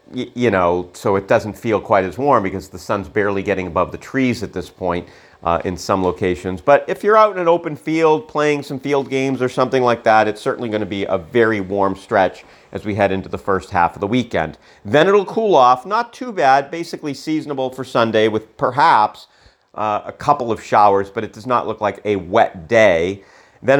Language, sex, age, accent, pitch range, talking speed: English, male, 40-59, American, 95-125 Hz, 220 wpm